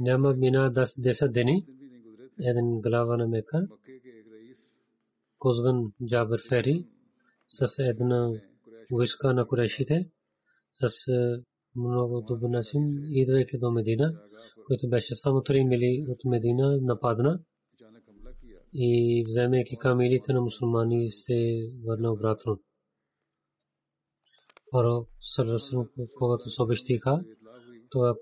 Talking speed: 40 wpm